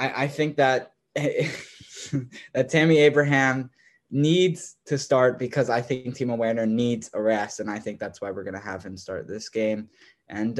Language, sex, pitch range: English, male, 110-130 Hz